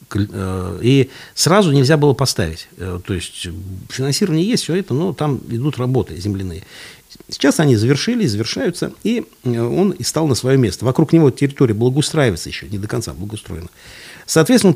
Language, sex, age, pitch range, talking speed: Russian, male, 50-69, 95-140 Hz, 150 wpm